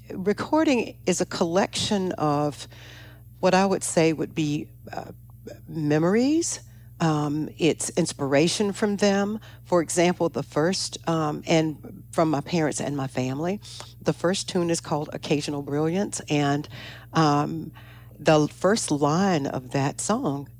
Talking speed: 130 wpm